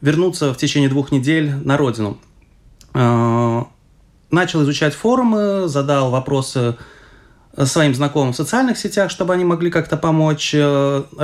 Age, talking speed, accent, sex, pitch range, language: 20-39, 115 wpm, native, male, 130-180 Hz, Russian